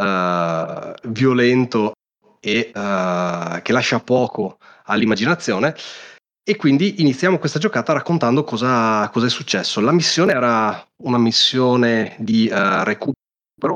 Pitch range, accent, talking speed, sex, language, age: 105-135 Hz, native, 115 wpm, male, Italian, 30-49